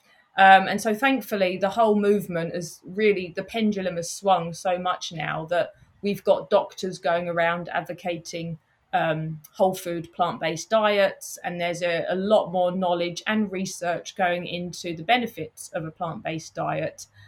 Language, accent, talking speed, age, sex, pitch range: English, British, 165 wpm, 20-39, female, 175-205 Hz